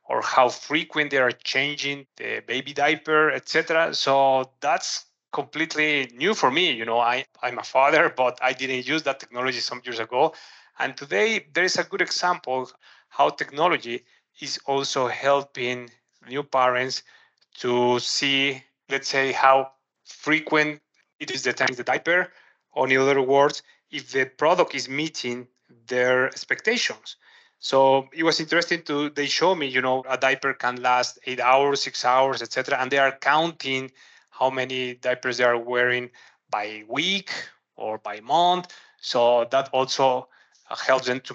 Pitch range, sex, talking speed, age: 125-145 Hz, male, 160 wpm, 30-49